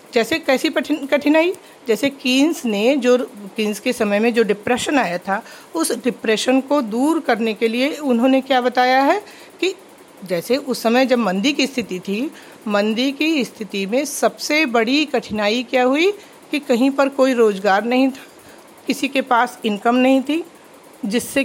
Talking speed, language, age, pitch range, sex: 160 wpm, Hindi, 50-69, 225-310 Hz, female